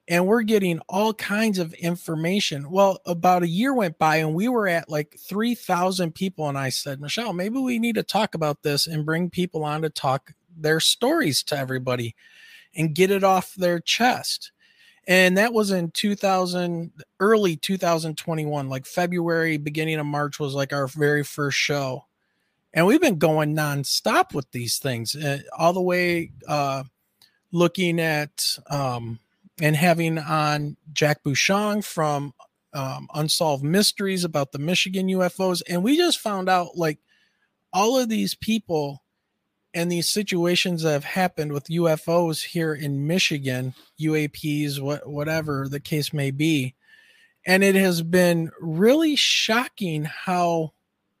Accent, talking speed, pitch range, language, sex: American, 150 wpm, 150-190 Hz, English, male